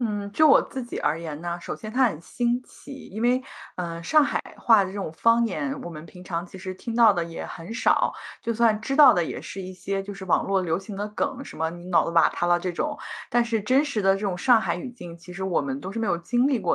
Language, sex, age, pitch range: Chinese, female, 20-39, 180-240 Hz